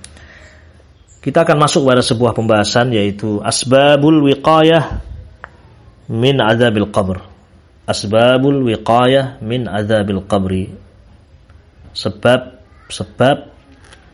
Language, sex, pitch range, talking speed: Indonesian, male, 95-125 Hz, 80 wpm